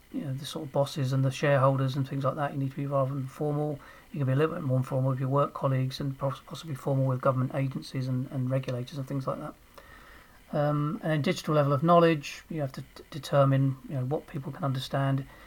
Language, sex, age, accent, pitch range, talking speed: English, male, 40-59, British, 135-150 Hz, 240 wpm